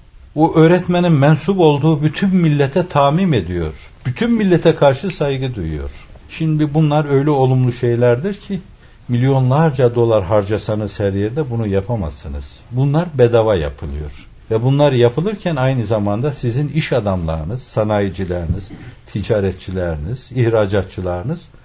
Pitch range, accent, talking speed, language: 105-150 Hz, native, 110 wpm, Turkish